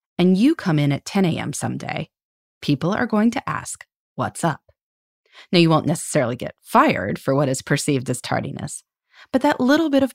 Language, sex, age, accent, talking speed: English, female, 30-49, American, 190 wpm